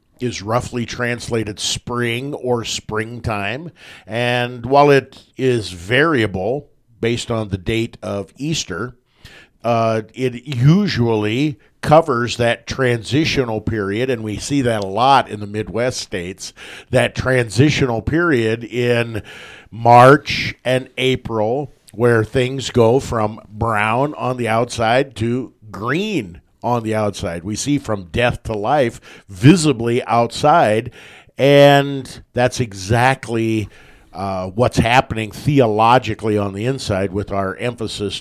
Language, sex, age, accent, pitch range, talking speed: English, male, 50-69, American, 105-130 Hz, 120 wpm